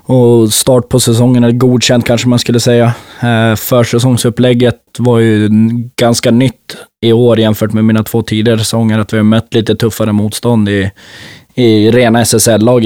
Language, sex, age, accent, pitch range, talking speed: Swedish, male, 20-39, native, 105-120 Hz, 160 wpm